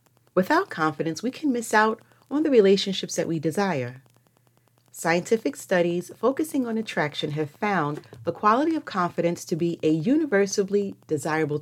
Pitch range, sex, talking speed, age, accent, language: 145-205 Hz, female, 145 wpm, 40-59, American, English